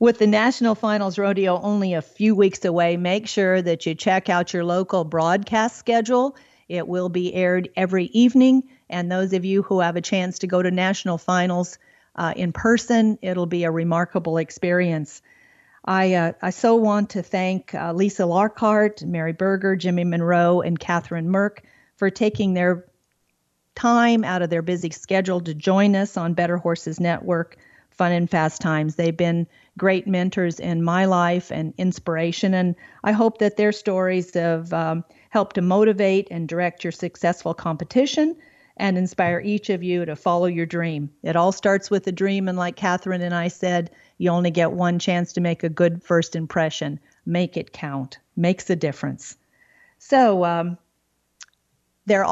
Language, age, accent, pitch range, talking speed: English, 50-69, American, 170-200 Hz, 170 wpm